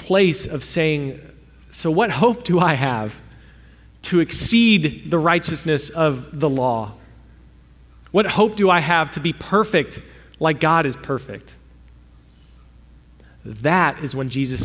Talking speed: 125 wpm